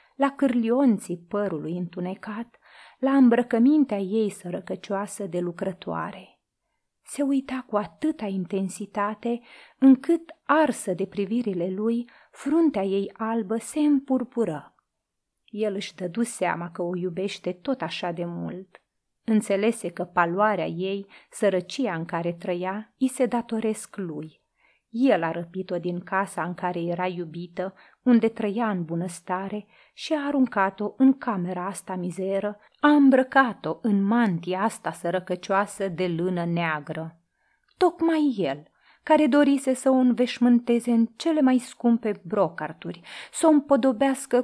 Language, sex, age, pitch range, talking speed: Romanian, female, 30-49, 180-255 Hz, 125 wpm